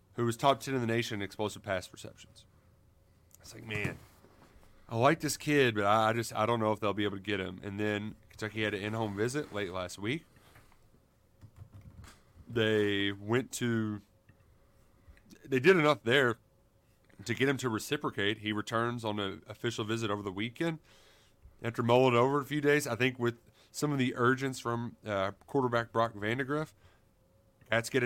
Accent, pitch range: American, 105-135 Hz